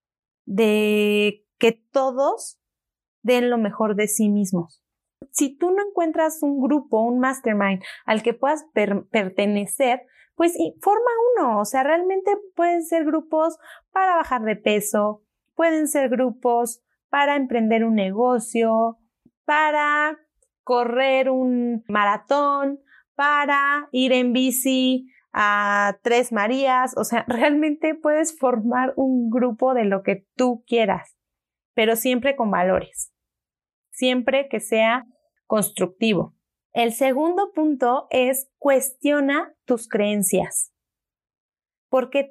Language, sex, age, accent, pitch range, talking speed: Spanish, female, 30-49, Mexican, 220-290 Hz, 115 wpm